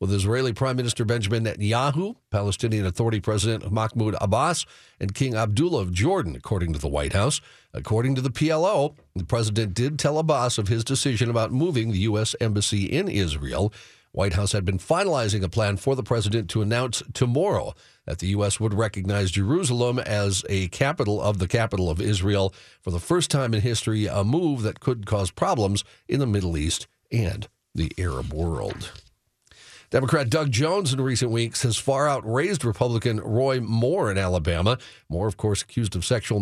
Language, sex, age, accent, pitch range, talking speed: English, male, 50-69, American, 100-130 Hz, 175 wpm